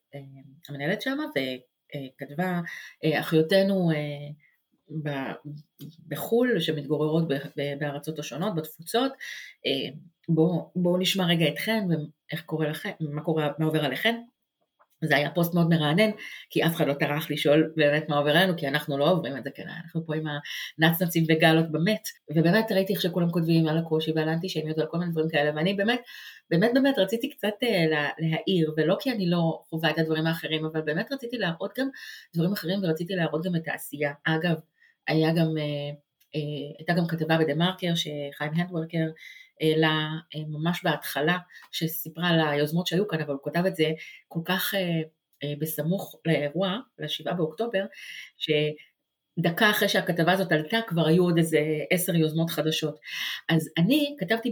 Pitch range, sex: 155-185 Hz, female